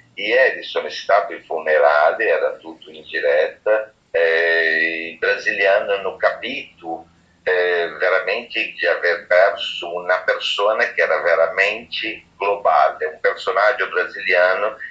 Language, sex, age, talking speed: Italian, male, 50-69, 115 wpm